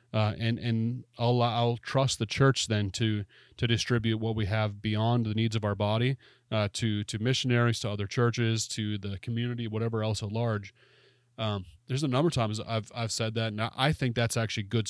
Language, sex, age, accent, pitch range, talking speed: English, male, 30-49, American, 105-120 Hz, 205 wpm